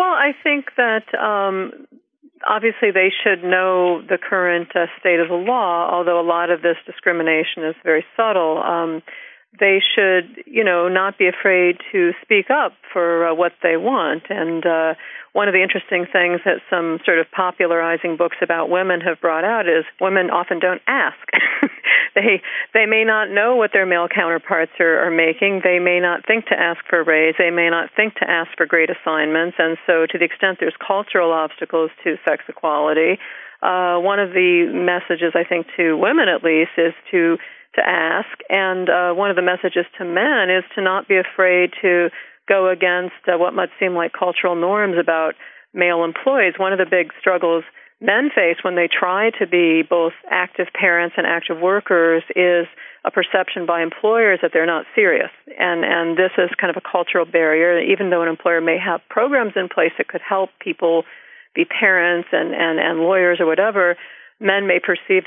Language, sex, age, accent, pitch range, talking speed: English, female, 50-69, American, 170-195 Hz, 190 wpm